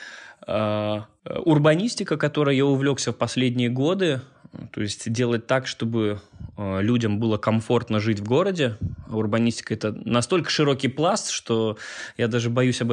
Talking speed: 130 wpm